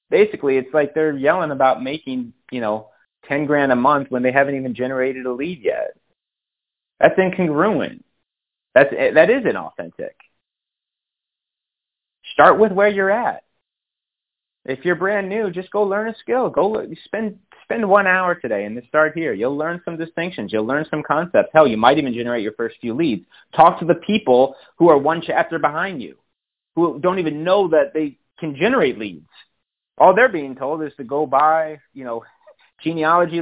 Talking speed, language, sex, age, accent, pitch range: 175 wpm, English, male, 30-49, American, 130-180 Hz